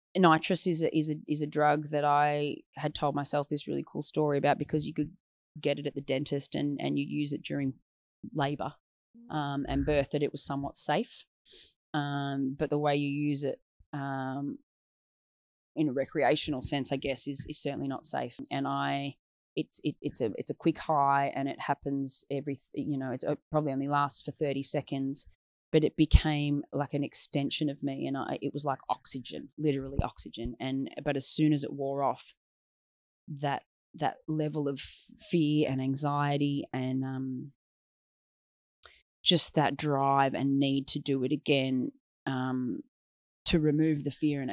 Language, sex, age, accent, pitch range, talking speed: English, female, 20-39, Australian, 135-150 Hz, 180 wpm